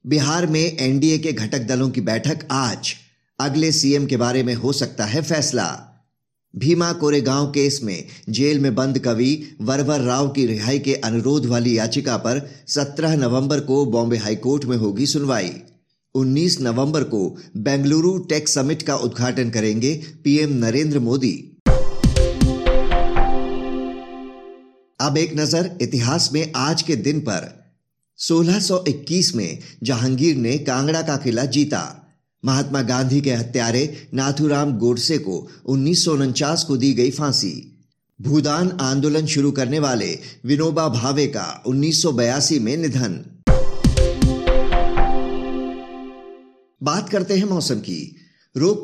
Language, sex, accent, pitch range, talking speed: Hindi, male, native, 125-150 Hz, 125 wpm